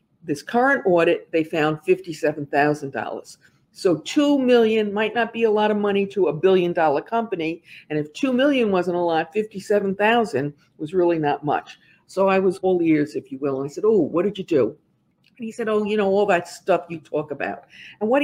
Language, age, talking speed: English, 50-69, 205 wpm